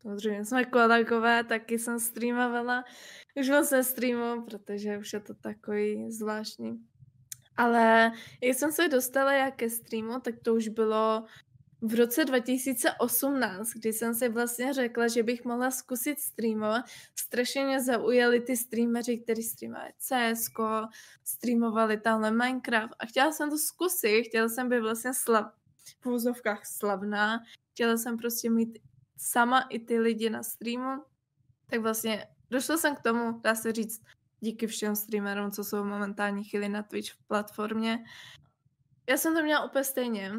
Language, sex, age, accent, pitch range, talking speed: English, female, 10-29, Czech, 215-250 Hz, 145 wpm